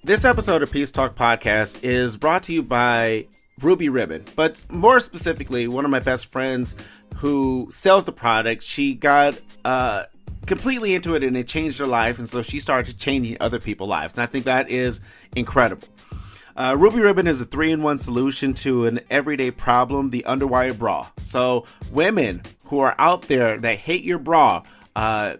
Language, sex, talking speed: English, male, 175 wpm